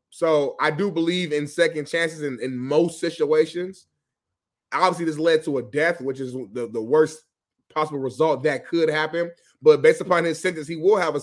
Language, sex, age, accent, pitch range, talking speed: English, male, 20-39, American, 145-170 Hz, 190 wpm